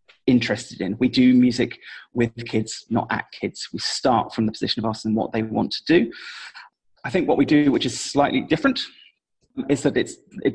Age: 30-49